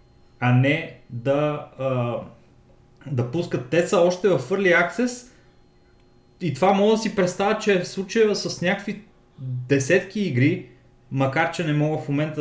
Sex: male